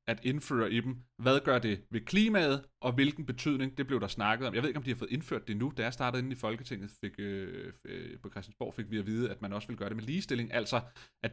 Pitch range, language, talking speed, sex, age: 115-140 Hz, Danish, 275 wpm, male, 30-49